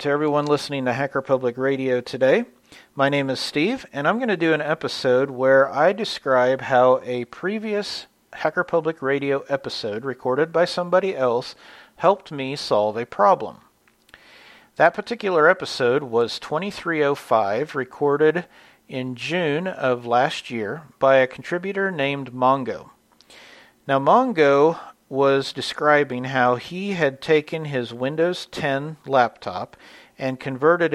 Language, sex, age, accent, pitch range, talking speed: English, male, 40-59, American, 130-165 Hz, 130 wpm